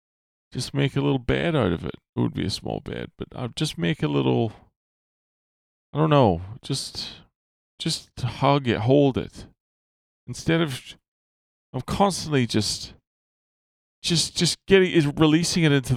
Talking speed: 155 wpm